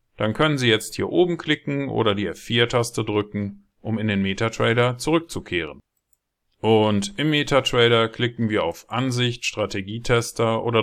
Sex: male